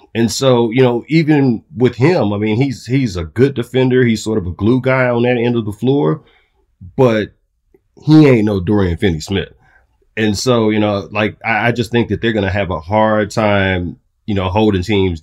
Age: 30-49